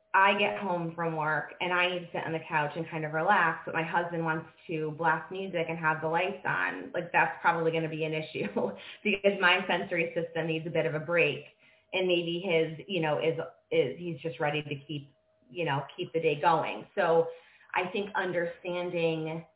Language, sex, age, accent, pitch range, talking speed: English, female, 20-39, American, 160-185 Hz, 210 wpm